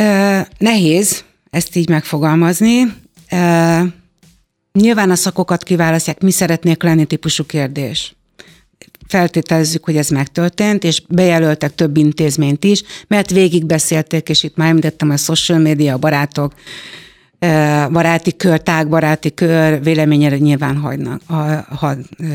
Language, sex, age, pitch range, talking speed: Hungarian, female, 60-79, 150-180 Hz, 120 wpm